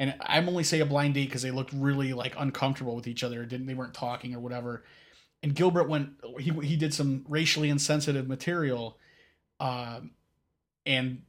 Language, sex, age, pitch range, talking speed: English, male, 30-49, 135-160 Hz, 180 wpm